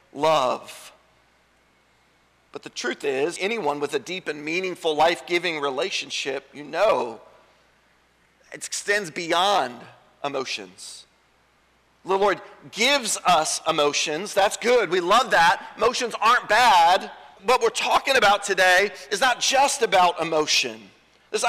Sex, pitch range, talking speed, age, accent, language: male, 185-270 Hz, 120 wpm, 40-59, American, English